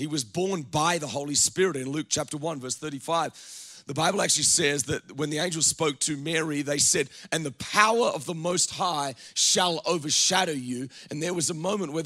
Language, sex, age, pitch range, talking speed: English, male, 30-49, 150-185 Hz, 210 wpm